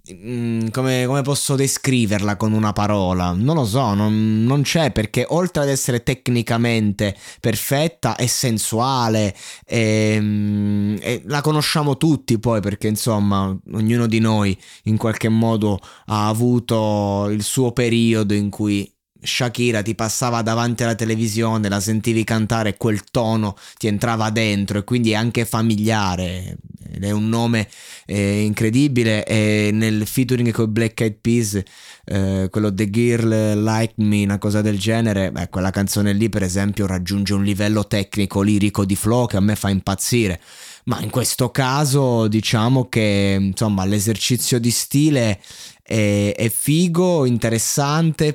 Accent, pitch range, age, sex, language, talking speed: native, 105-130 Hz, 20-39, male, Italian, 140 wpm